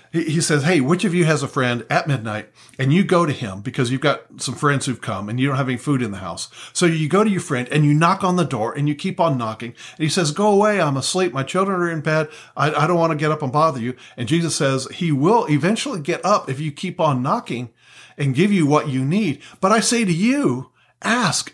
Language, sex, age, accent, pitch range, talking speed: English, male, 50-69, American, 125-170 Hz, 260 wpm